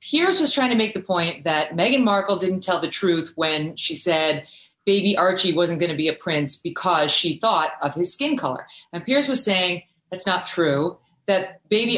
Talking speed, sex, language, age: 205 wpm, female, English, 30-49